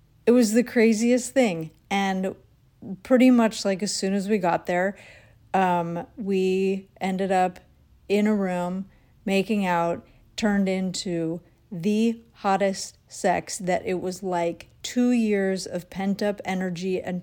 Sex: female